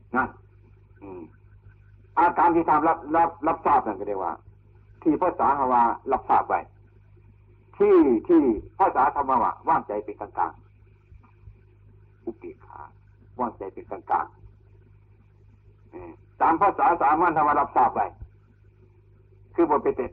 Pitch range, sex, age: 100-145 Hz, male, 60-79